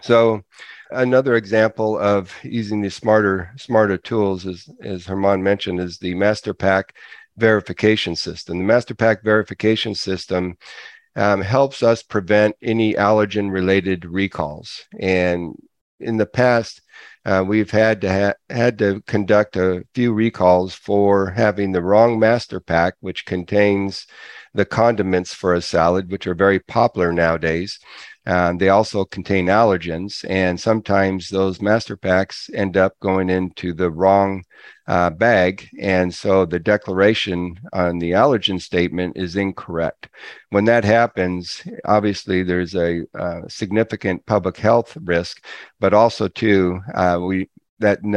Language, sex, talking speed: English, male, 135 wpm